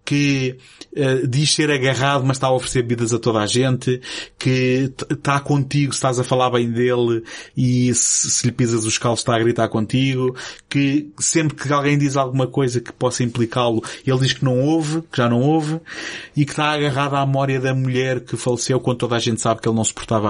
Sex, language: male, Portuguese